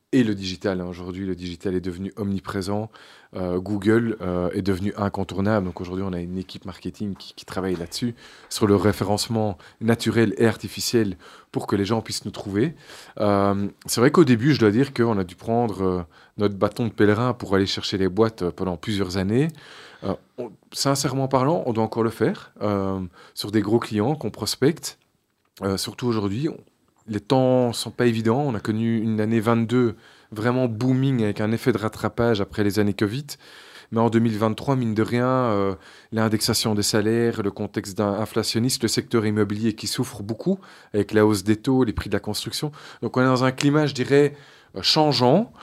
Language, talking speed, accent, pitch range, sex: French, 190 wpm, French, 100-120 Hz, male